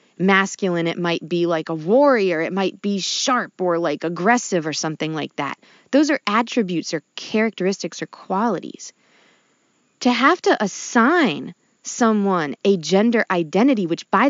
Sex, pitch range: female, 185-270 Hz